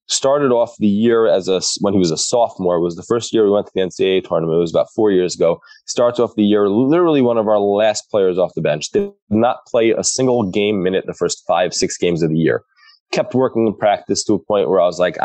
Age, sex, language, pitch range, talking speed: 20-39, male, English, 95-130 Hz, 265 wpm